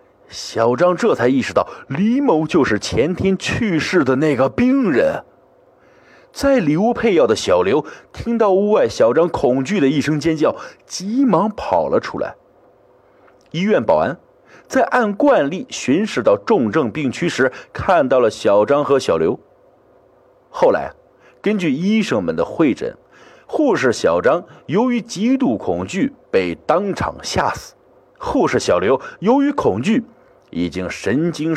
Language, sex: Chinese, male